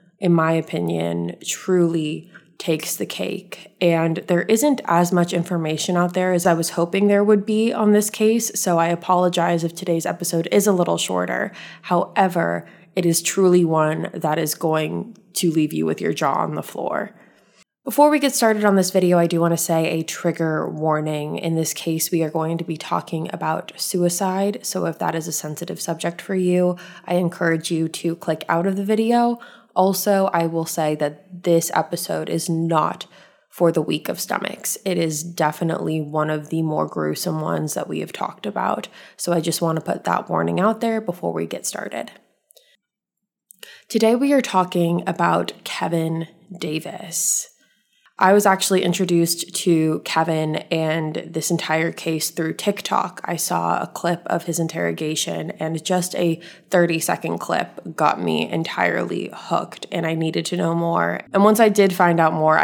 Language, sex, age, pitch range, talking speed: English, female, 20-39, 160-185 Hz, 175 wpm